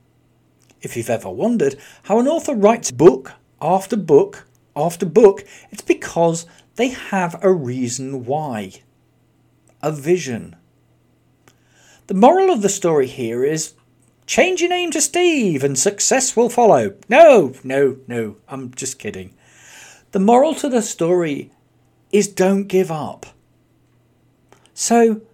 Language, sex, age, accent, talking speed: English, male, 40-59, British, 130 wpm